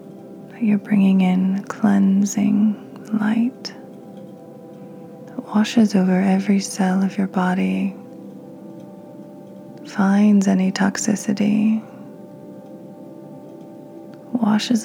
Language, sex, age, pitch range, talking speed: English, female, 20-39, 195-220 Hz, 70 wpm